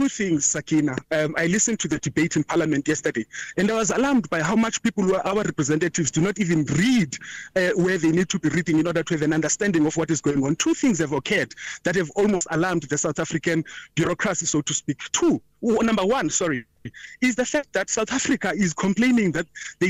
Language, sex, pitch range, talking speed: English, male, 165-220 Hz, 225 wpm